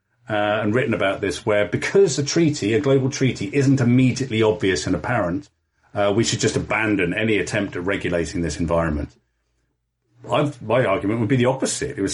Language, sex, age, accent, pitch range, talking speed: English, male, 40-59, British, 100-130 Hz, 180 wpm